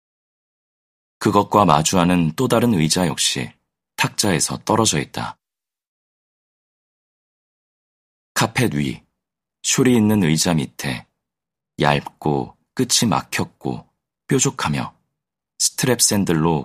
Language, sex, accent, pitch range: Korean, male, native, 75-105 Hz